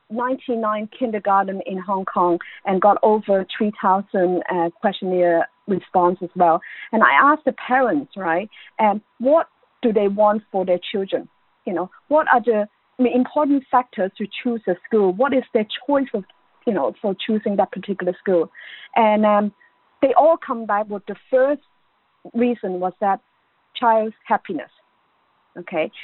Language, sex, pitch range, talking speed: English, female, 190-255 Hz, 150 wpm